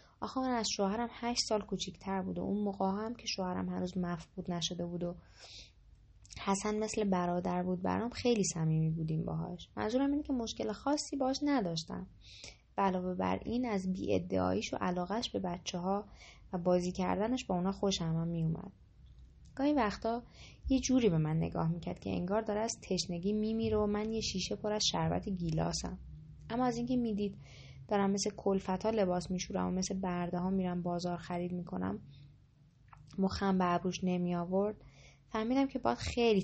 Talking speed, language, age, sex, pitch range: 165 wpm, English, 20-39, female, 170-215 Hz